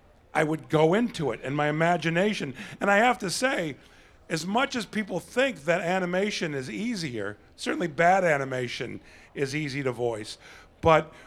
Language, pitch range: English, 150-195 Hz